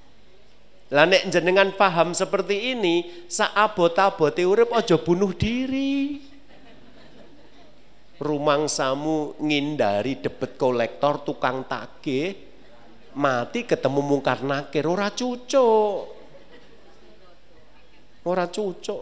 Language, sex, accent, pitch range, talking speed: Indonesian, male, native, 110-175 Hz, 80 wpm